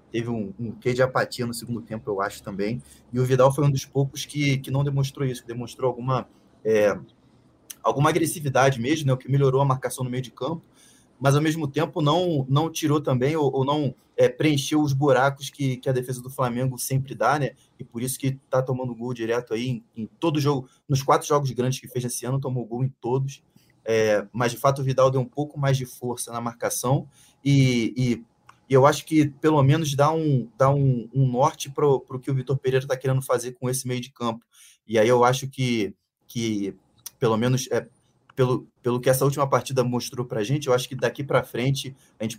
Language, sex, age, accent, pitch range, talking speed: Portuguese, male, 20-39, Brazilian, 120-140 Hz, 220 wpm